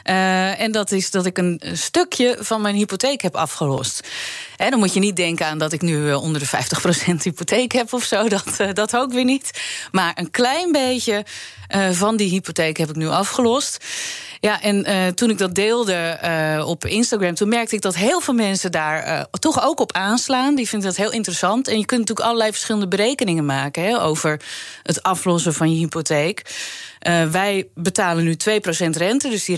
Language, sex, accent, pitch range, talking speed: Dutch, female, Dutch, 175-230 Hz, 205 wpm